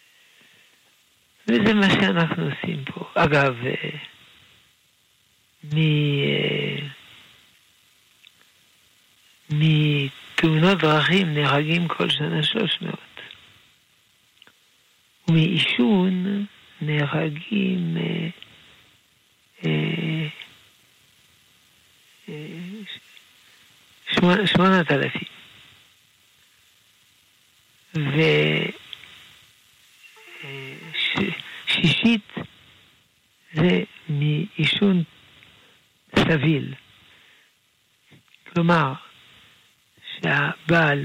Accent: Italian